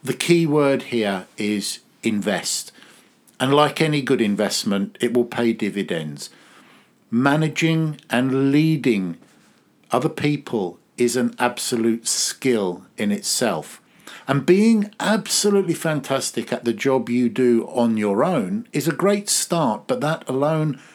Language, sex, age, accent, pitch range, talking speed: English, male, 50-69, British, 110-145 Hz, 130 wpm